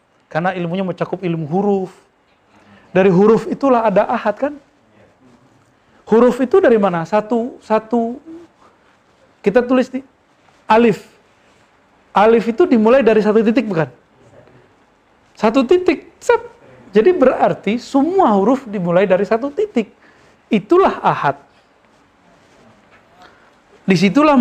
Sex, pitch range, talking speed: male, 170-235 Hz, 105 wpm